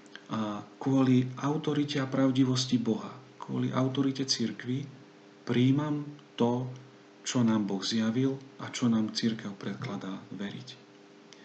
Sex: male